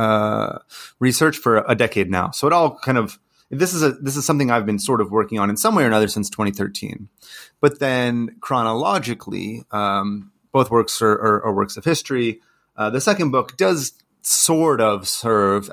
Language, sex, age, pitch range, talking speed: English, male, 30-49, 100-115 Hz, 190 wpm